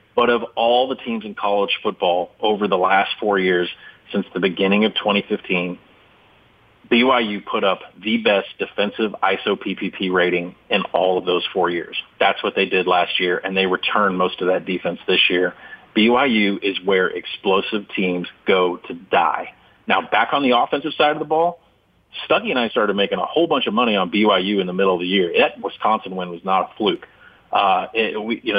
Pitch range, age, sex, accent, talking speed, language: 95-125 Hz, 30-49, male, American, 190 wpm, English